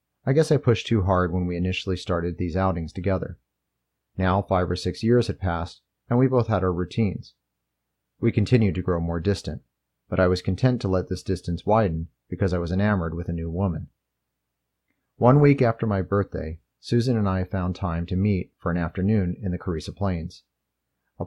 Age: 30-49